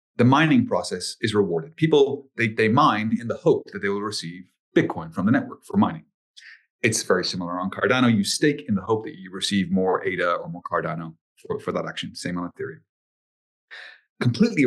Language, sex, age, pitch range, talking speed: English, male, 30-49, 110-165 Hz, 195 wpm